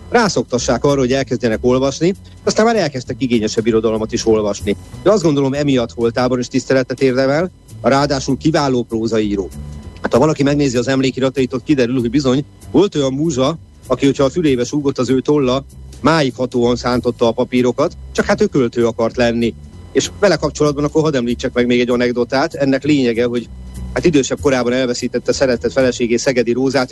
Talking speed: 165 wpm